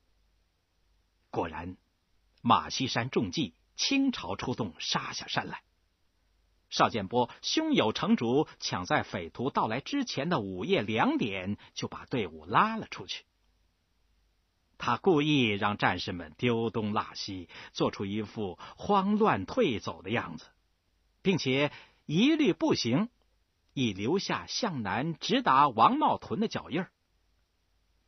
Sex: male